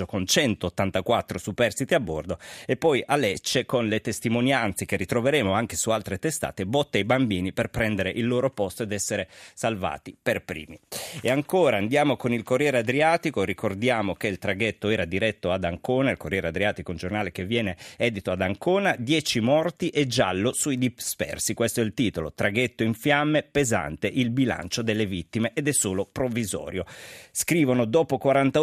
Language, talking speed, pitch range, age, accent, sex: Italian, 170 wpm, 95-130 Hz, 30-49, native, male